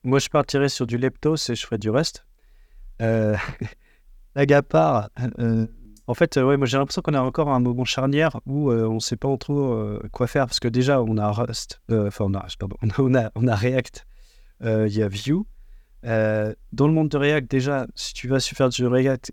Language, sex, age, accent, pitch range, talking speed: French, male, 30-49, French, 115-135 Hz, 225 wpm